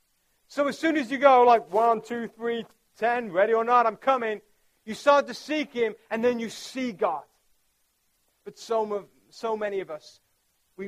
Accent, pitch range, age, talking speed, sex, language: British, 195-250 Hz, 40-59, 180 wpm, male, English